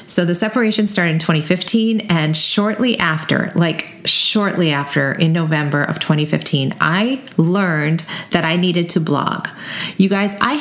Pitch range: 170-215 Hz